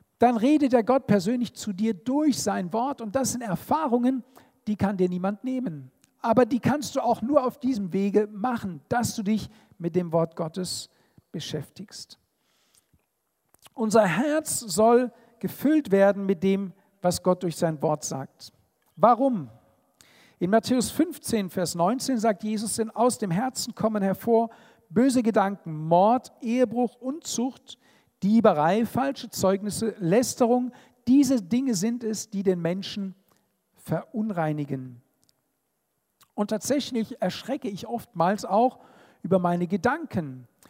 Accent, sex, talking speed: German, male, 135 wpm